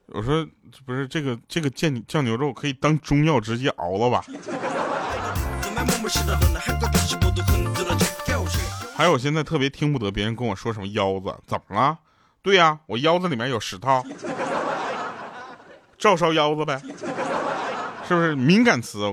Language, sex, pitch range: Chinese, male, 105-175 Hz